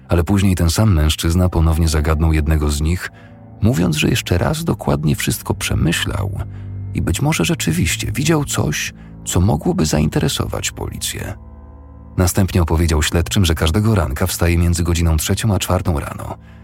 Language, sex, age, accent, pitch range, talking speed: Polish, male, 40-59, native, 80-105 Hz, 145 wpm